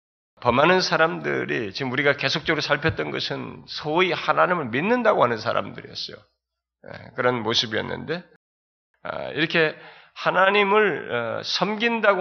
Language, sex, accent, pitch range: Korean, male, native, 145-195 Hz